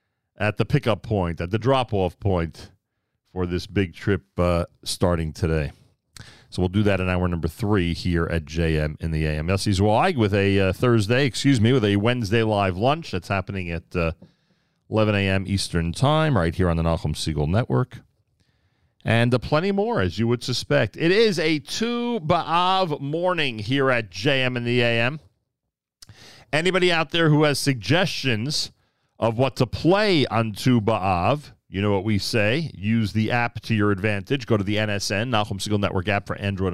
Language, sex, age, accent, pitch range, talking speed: English, male, 40-59, American, 95-125 Hz, 180 wpm